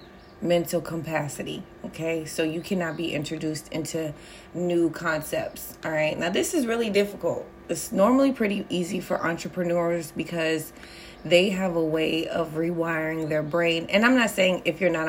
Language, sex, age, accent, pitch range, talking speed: English, female, 30-49, American, 160-180 Hz, 160 wpm